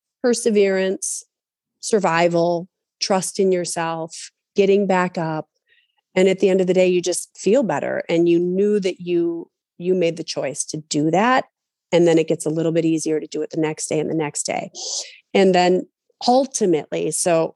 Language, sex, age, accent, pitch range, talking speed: English, female, 40-59, American, 165-205 Hz, 180 wpm